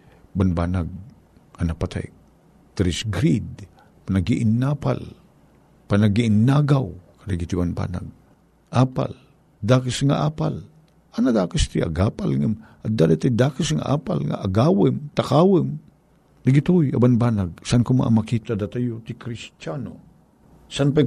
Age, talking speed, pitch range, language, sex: 50-69, 110 wpm, 95-130 Hz, Filipino, male